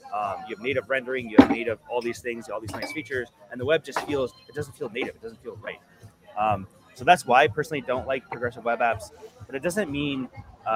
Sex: male